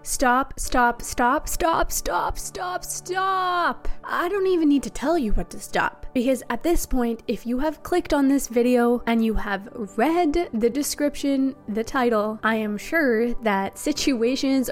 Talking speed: 165 wpm